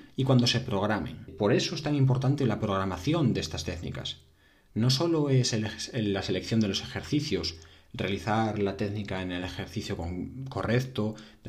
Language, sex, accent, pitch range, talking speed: Spanish, male, Spanish, 100-135 Hz, 165 wpm